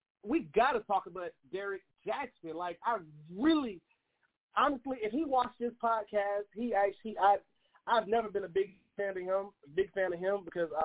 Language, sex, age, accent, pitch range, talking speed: English, male, 30-49, American, 165-215 Hz, 175 wpm